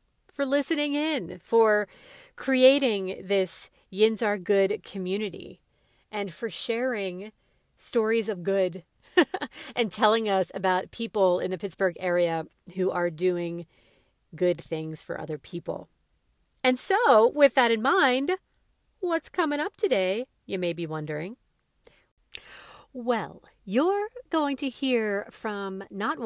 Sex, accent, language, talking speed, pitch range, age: female, American, English, 125 wpm, 175-250 Hz, 40-59